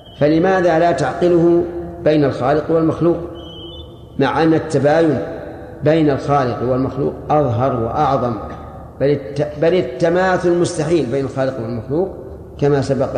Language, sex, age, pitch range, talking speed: Arabic, male, 40-59, 130-160 Hz, 105 wpm